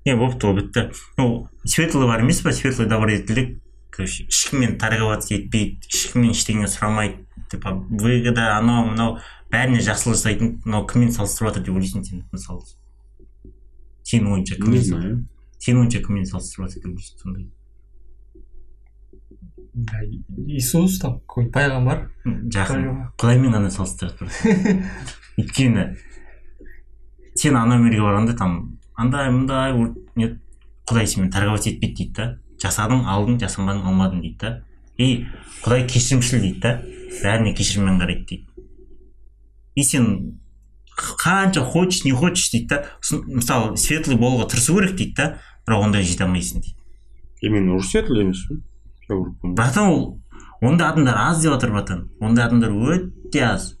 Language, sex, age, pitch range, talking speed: Russian, male, 20-39, 95-125 Hz, 60 wpm